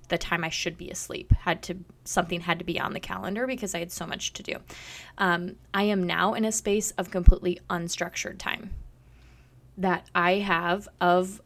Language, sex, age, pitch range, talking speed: English, female, 20-39, 175-200 Hz, 195 wpm